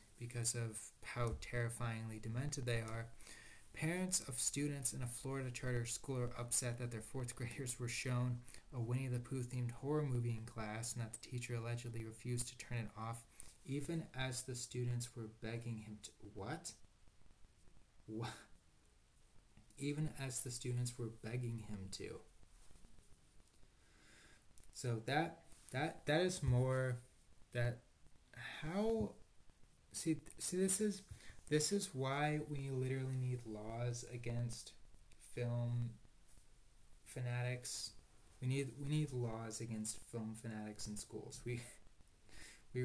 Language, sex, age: English, male, 20-39